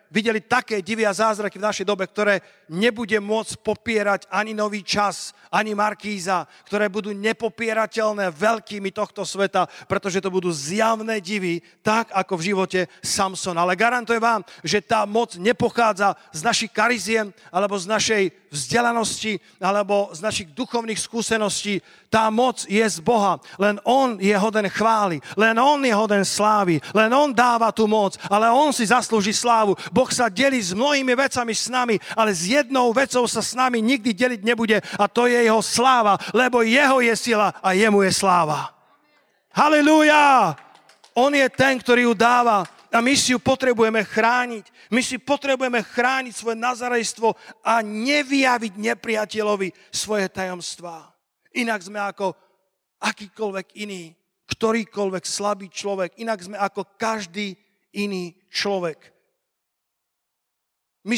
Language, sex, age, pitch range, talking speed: Slovak, male, 40-59, 200-235 Hz, 145 wpm